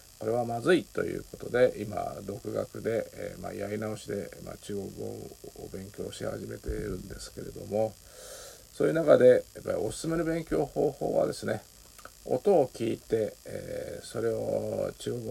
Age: 50-69